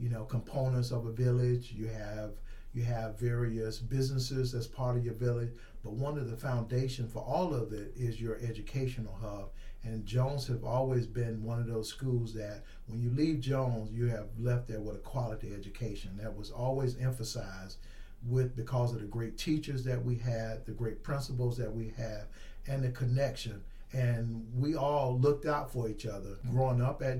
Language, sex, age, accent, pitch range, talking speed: English, male, 50-69, American, 110-130 Hz, 190 wpm